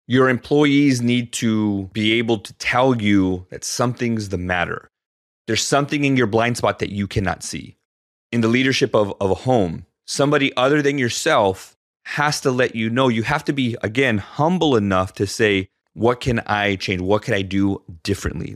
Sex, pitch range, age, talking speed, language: male, 95-125 Hz, 30-49, 185 wpm, English